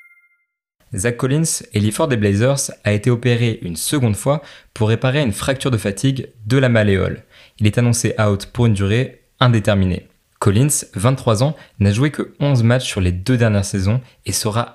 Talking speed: 180 wpm